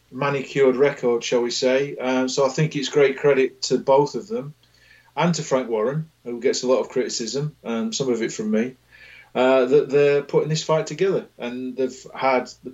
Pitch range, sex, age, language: 125-145 Hz, male, 40-59, English